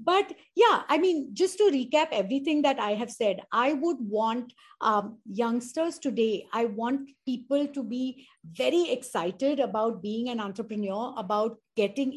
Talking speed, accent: 155 wpm, Indian